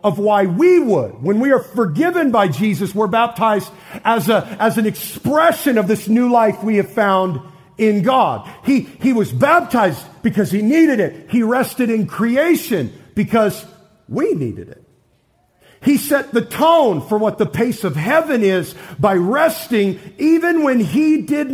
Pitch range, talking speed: 200-270 Hz, 165 wpm